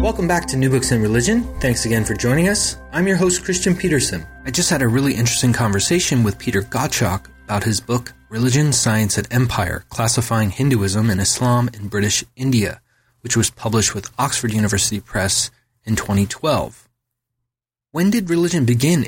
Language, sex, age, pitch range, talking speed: English, male, 30-49, 105-125 Hz, 170 wpm